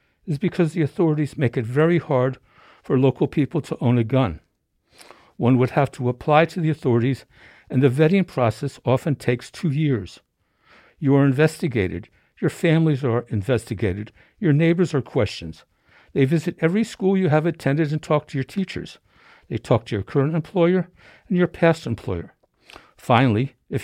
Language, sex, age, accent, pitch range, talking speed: English, male, 60-79, American, 125-165 Hz, 165 wpm